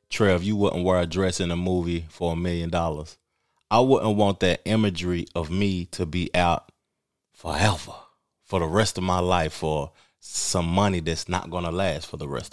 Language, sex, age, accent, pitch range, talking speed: English, male, 30-49, American, 85-110 Hz, 195 wpm